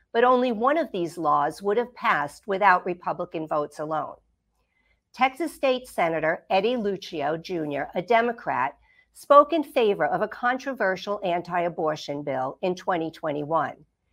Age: 50-69